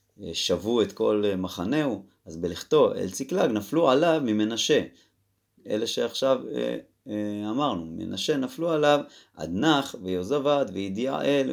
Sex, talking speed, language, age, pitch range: male, 115 wpm, Hebrew, 30-49, 95-125 Hz